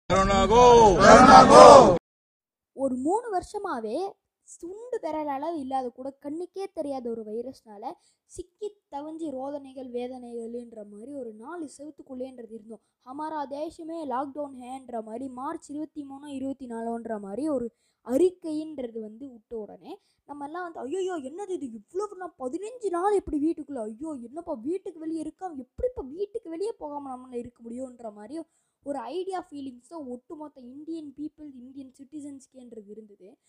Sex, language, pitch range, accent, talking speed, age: female, Tamil, 245-330 Hz, native, 120 wpm, 20-39